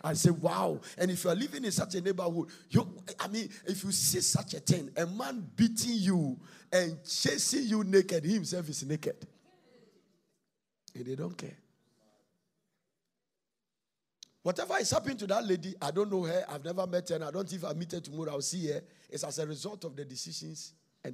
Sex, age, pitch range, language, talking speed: male, 50-69, 160-205 Hz, English, 195 wpm